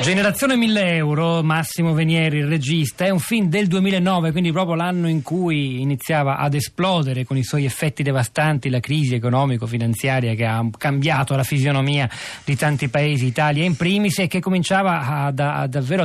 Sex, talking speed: male, 160 wpm